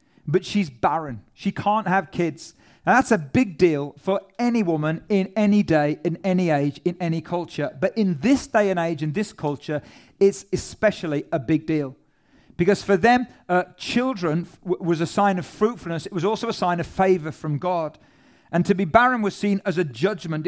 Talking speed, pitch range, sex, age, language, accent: 195 wpm, 165-215 Hz, male, 40-59, English, British